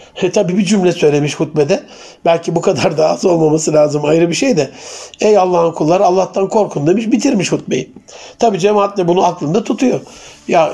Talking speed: 180 wpm